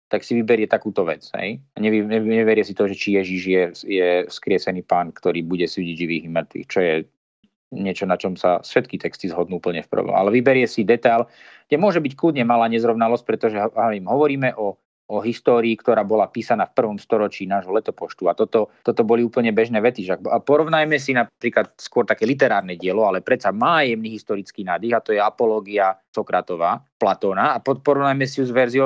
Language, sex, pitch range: Slovak, male, 100-130 Hz